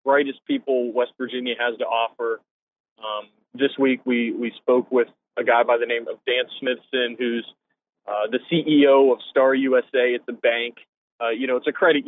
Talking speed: 190 wpm